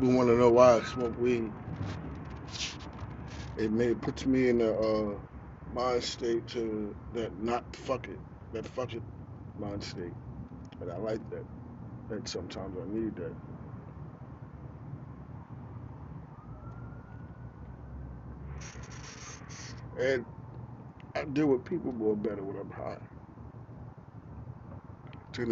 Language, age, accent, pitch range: English, 40-59, American, 110-130 Hz